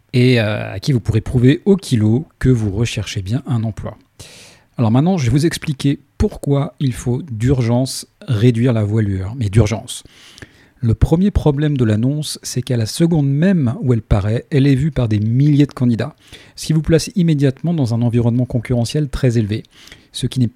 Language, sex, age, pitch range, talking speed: French, male, 40-59, 115-140 Hz, 190 wpm